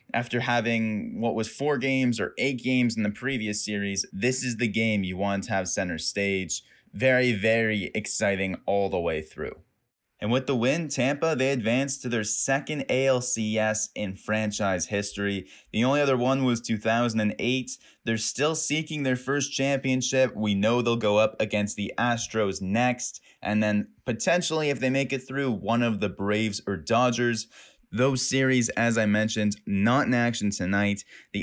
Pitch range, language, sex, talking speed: 105-125 Hz, English, male, 170 wpm